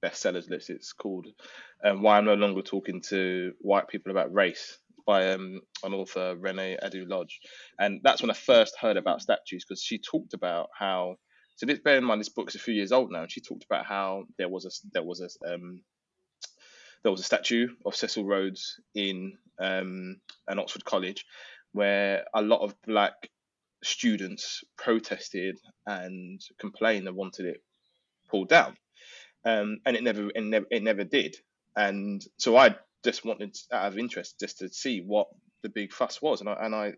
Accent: British